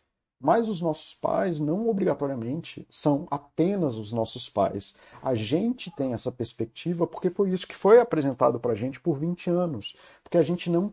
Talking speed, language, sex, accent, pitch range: 170 wpm, Portuguese, male, Brazilian, 125-170 Hz